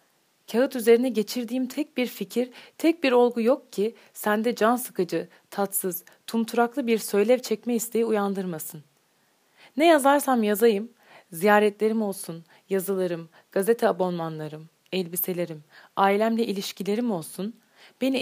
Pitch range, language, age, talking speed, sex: 185-240 Hz, Turkish, 30-49, 110 wpm, female